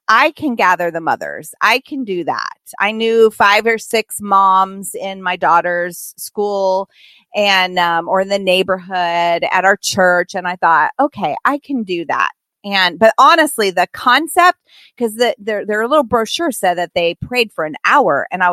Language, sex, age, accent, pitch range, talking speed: English, female, 30-49, American, 180-235 Hz, 180 wpm